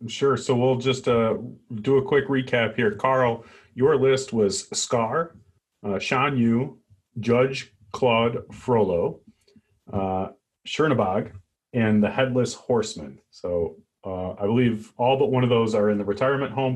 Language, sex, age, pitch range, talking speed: English, male, 30-49, 110-135 Hz, 145 wpm